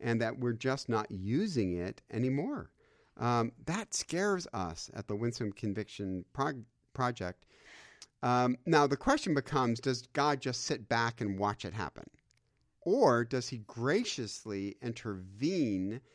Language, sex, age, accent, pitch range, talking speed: English, male, 50-69, American, 95-125 Hz, 135 wpm